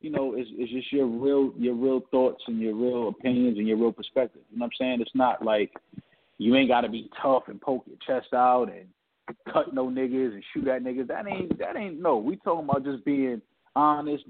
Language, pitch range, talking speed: English, 115-135 Hz, 235 wpm